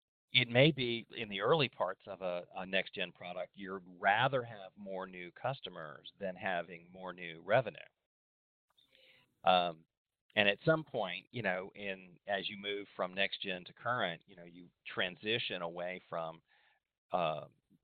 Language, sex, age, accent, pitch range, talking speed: English, male, 40-59, American, 95-130 Hz, 150 wpm